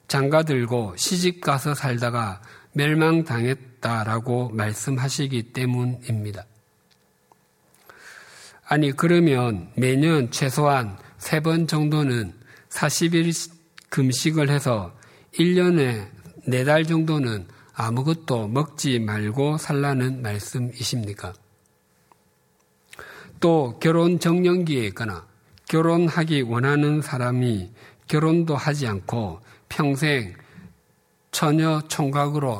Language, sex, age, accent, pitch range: Korean, male, 50-69, native, 110-150 Hz